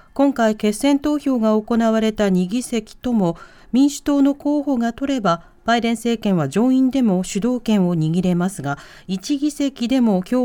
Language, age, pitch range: Japanese, 40-59, 180-260 Hz